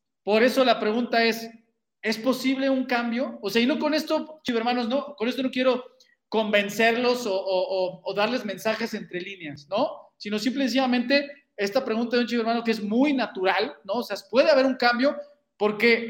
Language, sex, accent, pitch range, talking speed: Spanish, male, Mexican, 195-250 Hz, 200 wpm